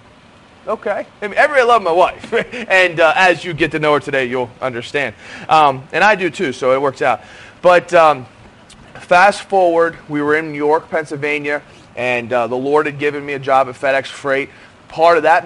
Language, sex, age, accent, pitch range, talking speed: English, male, 30-49, American, 135-170 Hz, 200 wpm